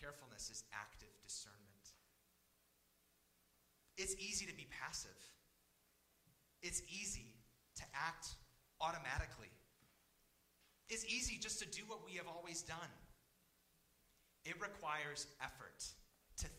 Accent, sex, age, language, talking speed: American, male, 30-49, English, 100 wpm